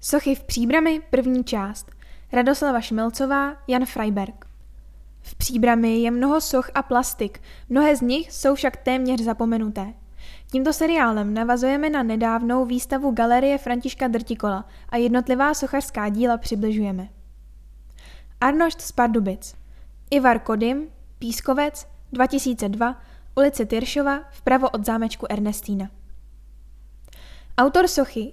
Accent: native